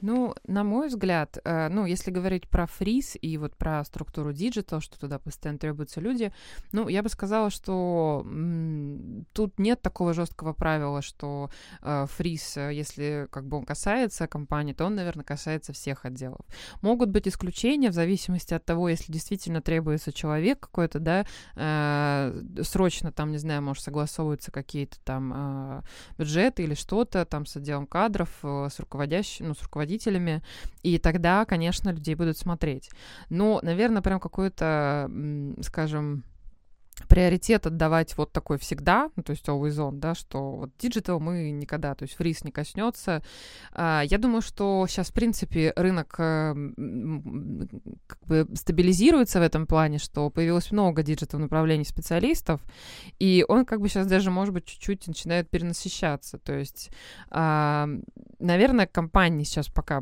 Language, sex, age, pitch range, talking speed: Russian, female, 20-39, 150-190 Hz, 150 wpm